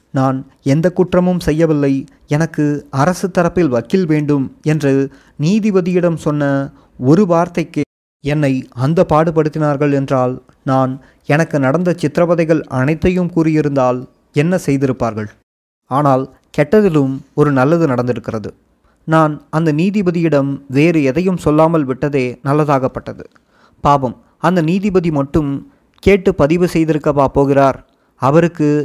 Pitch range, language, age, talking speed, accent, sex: 135-170 Hz, Tamil, 20-39, 100 wpm, native, male